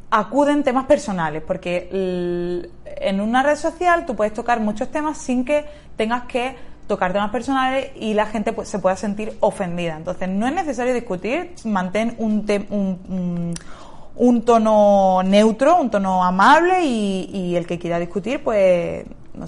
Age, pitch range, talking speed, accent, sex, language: 20-39, 180-250 Hz, 150 wpm, Spanish, female, Spanish